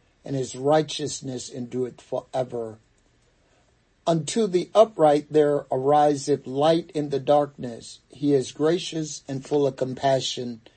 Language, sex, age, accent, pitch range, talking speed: English, male, 60-79, American, 125-155 Hz, 125 wpm